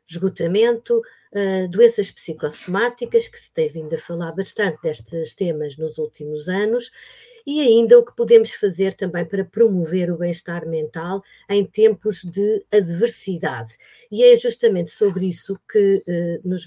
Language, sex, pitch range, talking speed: Portuguese, female, 175-215 Hz, 135 wpm